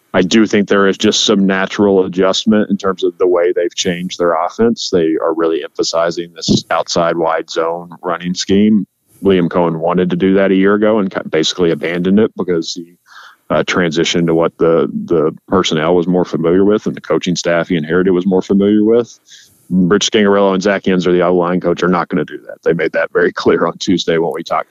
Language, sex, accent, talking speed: English, male, American, 215 wpm